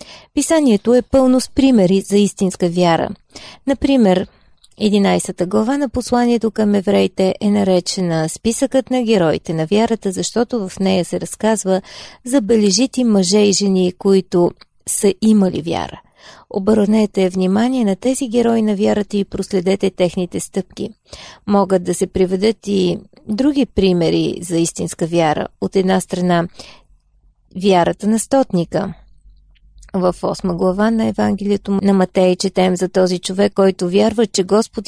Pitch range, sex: 185-220 Hz, female